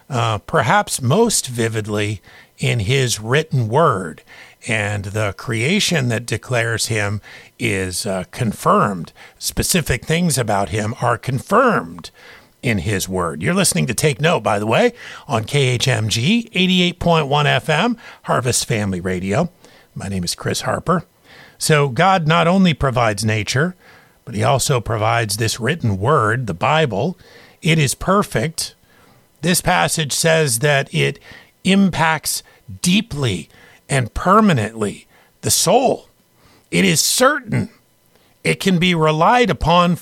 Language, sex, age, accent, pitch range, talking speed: English, male, 50-69, American, 110-165 Hz, 125 wpm